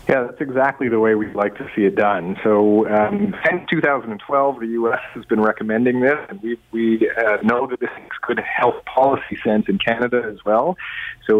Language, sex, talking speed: English, male, 190 wpm